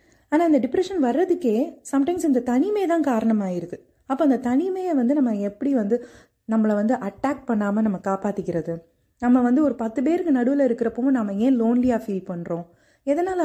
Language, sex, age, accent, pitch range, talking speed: Tamil, female, 30-49, native, 210-280 Hz, 155 wpm